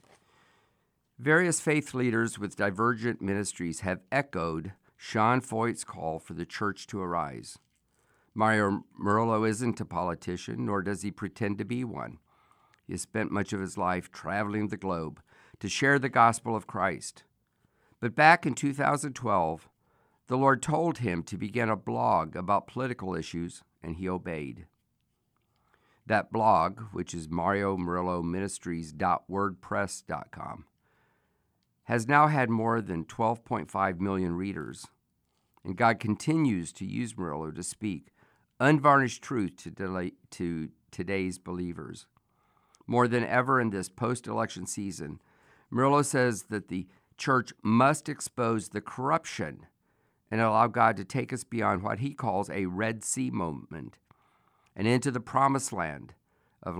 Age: 50-69